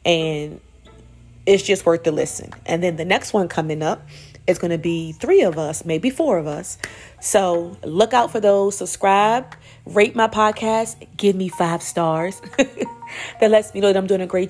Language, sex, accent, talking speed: English, female, American, 190 wpm